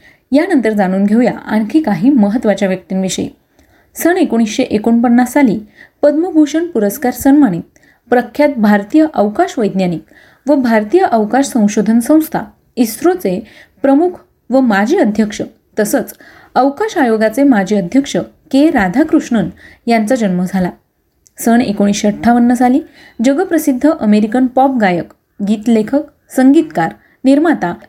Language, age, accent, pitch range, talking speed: Marathi, 30-49, native, 210-275 Hz, 90 wpm